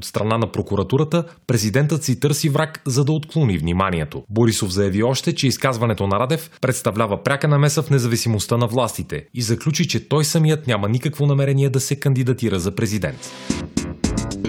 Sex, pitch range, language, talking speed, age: male, 105-145 Hz, Bulgarian, 160 wpm, 30-49